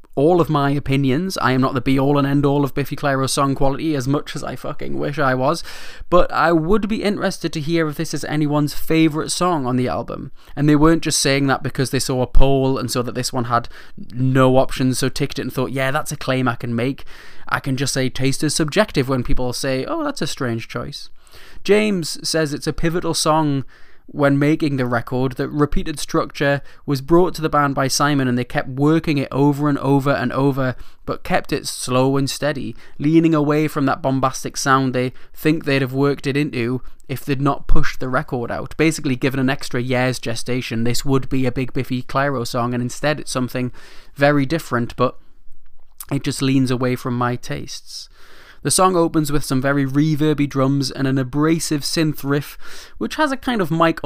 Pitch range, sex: 130-155 Hz, male